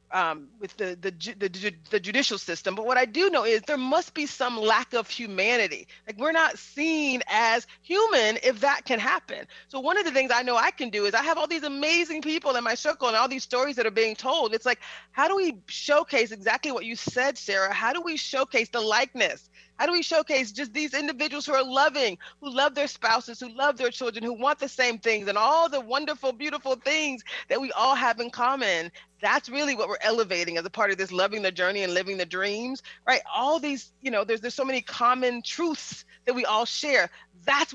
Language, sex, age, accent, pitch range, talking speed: English, female, 30-49, American, 225-290 Hz, 230 wpm